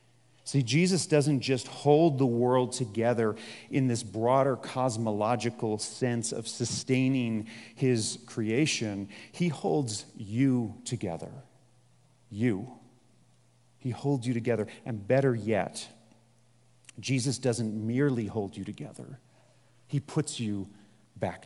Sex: male